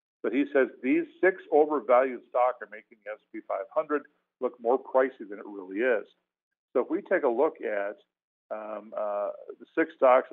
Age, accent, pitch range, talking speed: 50-69, American, 110-165 Hz, 180 wpm